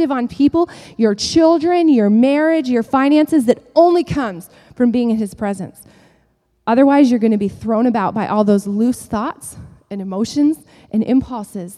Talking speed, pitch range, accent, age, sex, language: 165 wpm, 205-260 Hz, American, 30-49, female, English